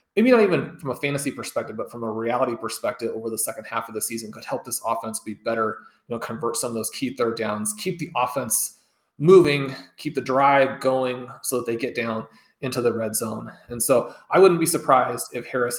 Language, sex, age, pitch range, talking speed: English, male, 20-39, 120-150 Hz, 225 wpm